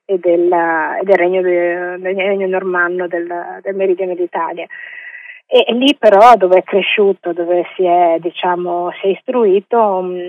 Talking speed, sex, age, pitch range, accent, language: 150 wpm, female, 30-49, 180-200 Hz, native, Italian